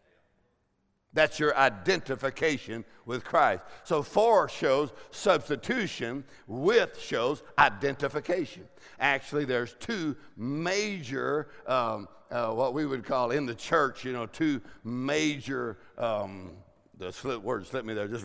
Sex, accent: male, American